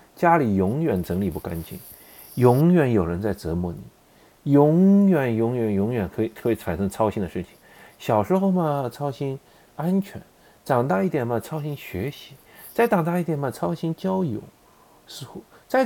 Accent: native